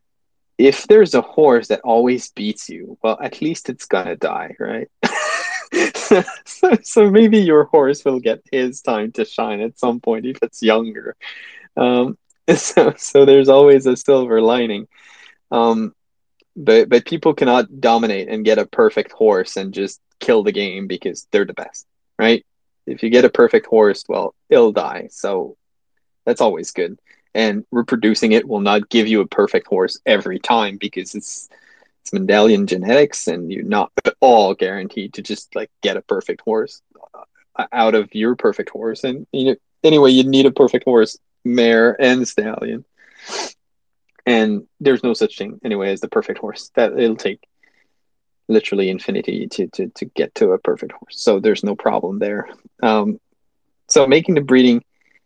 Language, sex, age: English, male, 20-39